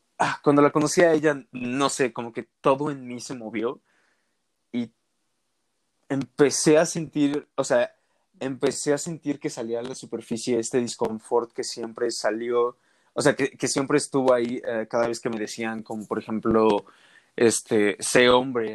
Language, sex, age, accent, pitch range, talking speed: Spanish, male, 20-39, Mexican, 115-135 Hz, 165 wpm